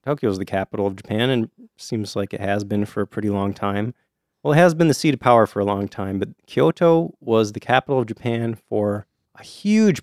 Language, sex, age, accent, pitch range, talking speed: English, male, 30-49, American, 100-125 Hz, 235 wpm